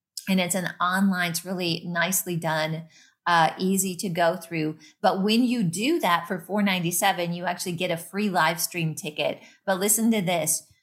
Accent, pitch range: American, 170-195 Hz